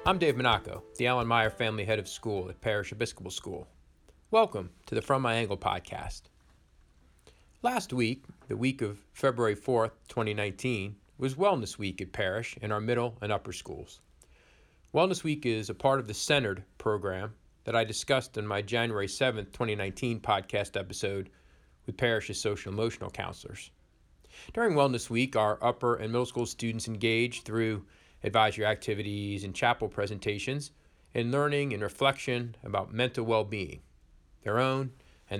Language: English